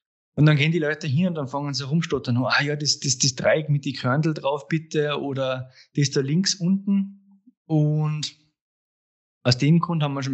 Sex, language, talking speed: male, German, 195 wpm